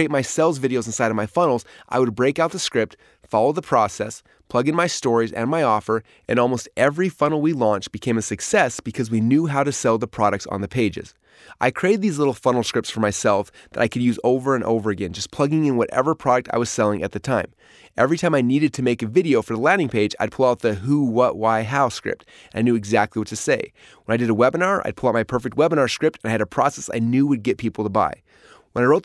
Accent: American